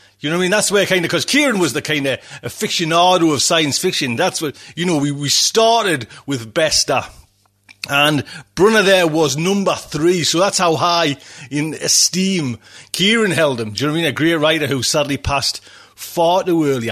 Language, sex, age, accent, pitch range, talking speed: English, male, 40-59, British, 145-210 Hz, 210 wpm